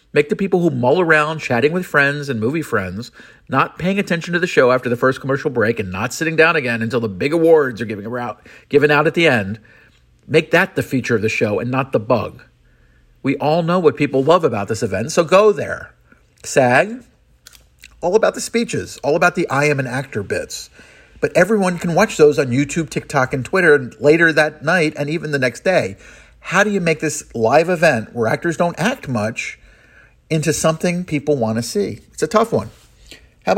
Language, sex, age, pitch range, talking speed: English, male, 50-69, 125-170 Hz, 210 wpm